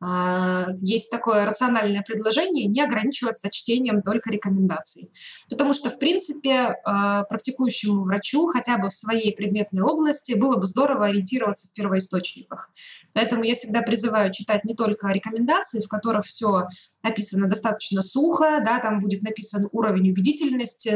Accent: native